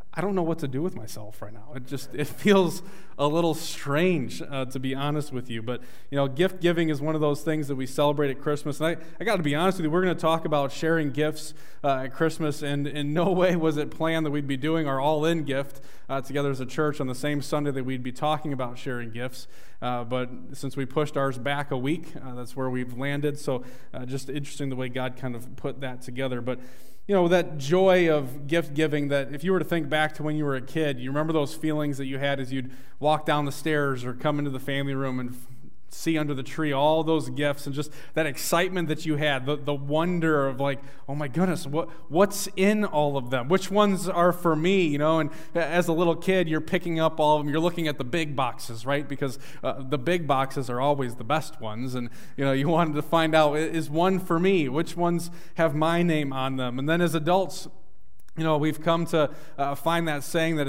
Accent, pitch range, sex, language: American, 135-160 Hz, male, English